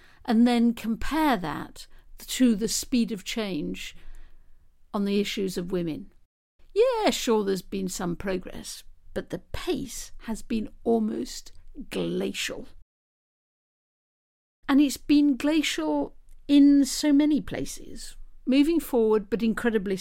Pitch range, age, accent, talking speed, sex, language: 205-265 Hz, 50-69, British, 115 wpm, female, English